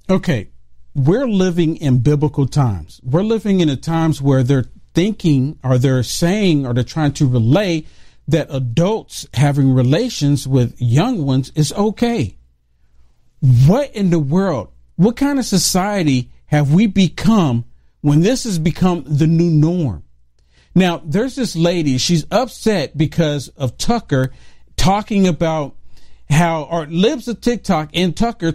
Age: 50-69